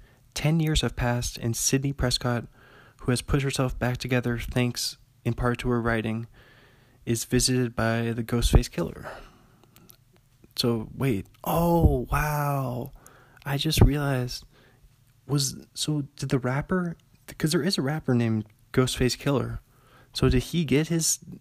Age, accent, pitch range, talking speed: 20-39, American, 115-135 Hz, 140 wpm